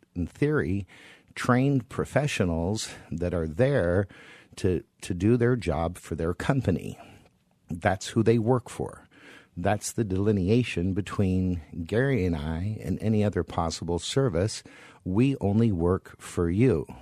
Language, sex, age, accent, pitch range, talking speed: English, male, 50-69, American, 85-110 Hz, 130 wpm